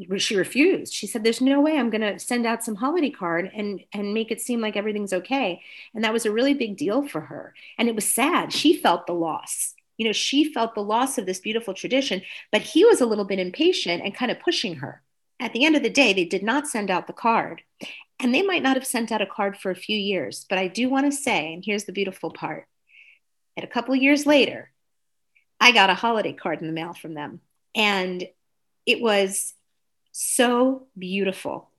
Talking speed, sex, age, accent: 225 wpm, female, 40-59, American